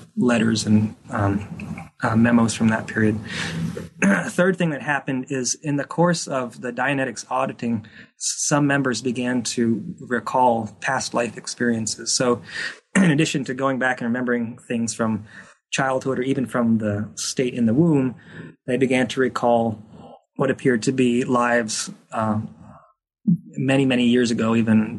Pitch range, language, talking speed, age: 110-125 Hz, English, 150 wpm, 20-39